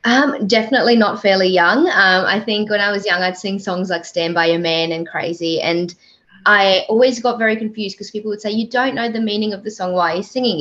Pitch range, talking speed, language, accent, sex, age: 170-215 Hz, 250 wpm, English, Australian, female, 20-39